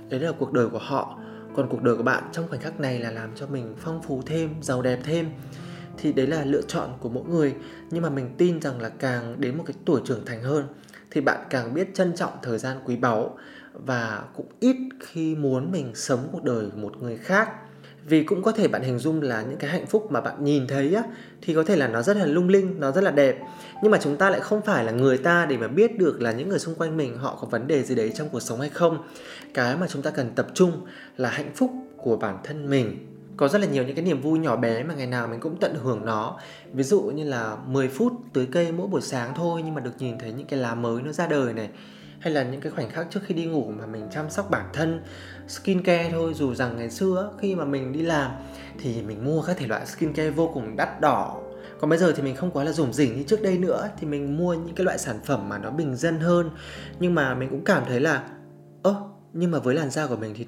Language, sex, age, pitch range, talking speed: Vietnamese, male, 20-39, 125-175 Hz, 265 wpm